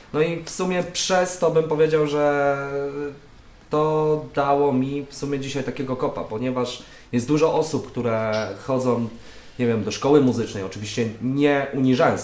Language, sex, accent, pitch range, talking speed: Polish, male, native, 115-140 Hz, 150 wpm